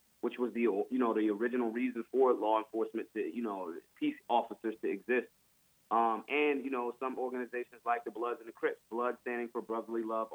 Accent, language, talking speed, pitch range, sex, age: American, English, 205 wpm, 115-130 Hz, male, 30-49